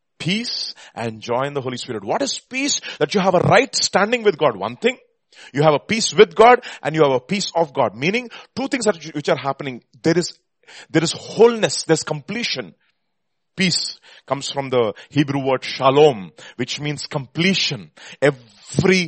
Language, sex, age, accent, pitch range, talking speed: English, male, 30-49, Indian, 140-200 Hz, 180 wpm